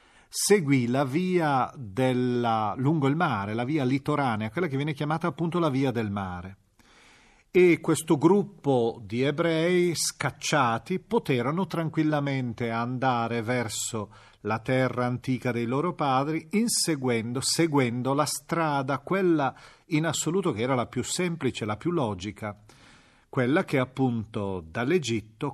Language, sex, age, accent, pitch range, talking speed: Italian, male, 40-59, native, 115-155 Hz, 125 wpm